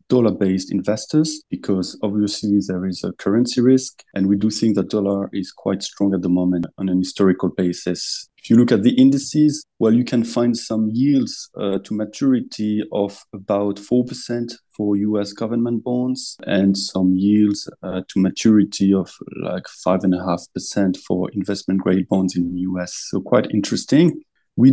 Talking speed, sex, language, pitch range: 160 wpm, male, English, 100-130 Hz